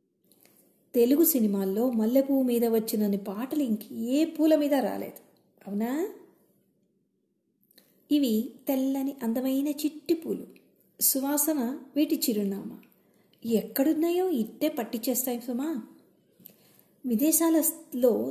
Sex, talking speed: female, 85 wpm